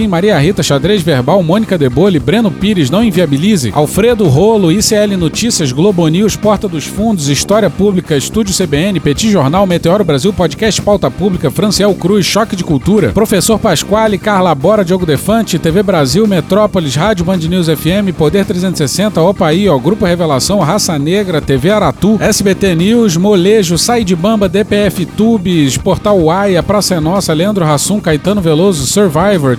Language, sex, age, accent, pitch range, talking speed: Portuguese, male, 40-59, Brazilian, 170-210 Hz, 155 wpm